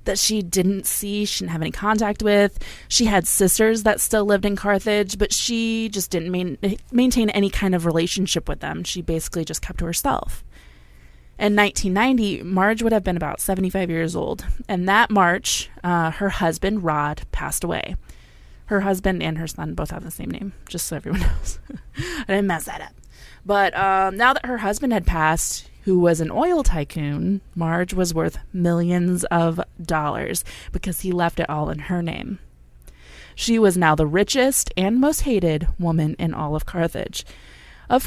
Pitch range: 160-210 Hz